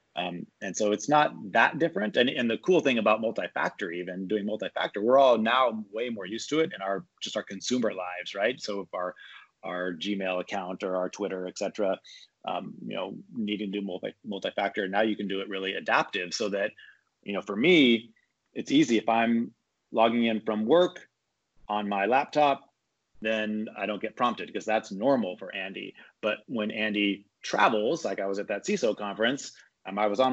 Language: English